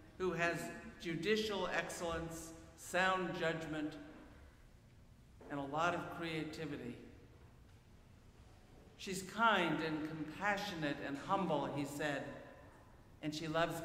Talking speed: 95 wpm